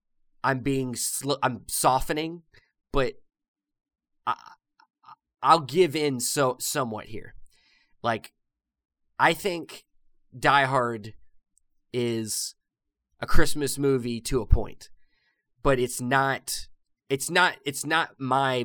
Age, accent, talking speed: 20-39, American, 105 wpm